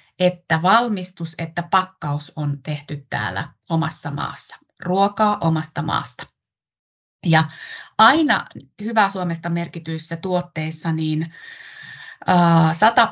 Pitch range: 155-185 Hz